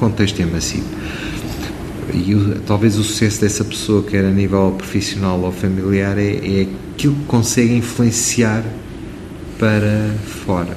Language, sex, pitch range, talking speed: Portuguese, male, 85-105 Hz, 135 wpm